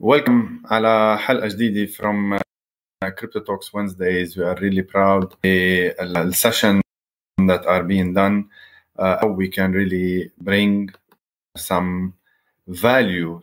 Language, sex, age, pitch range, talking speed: English, male, 30-49, 95-110 Hz, 110 wpm